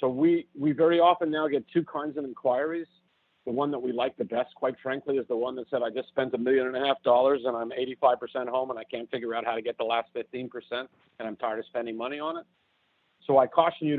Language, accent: English, American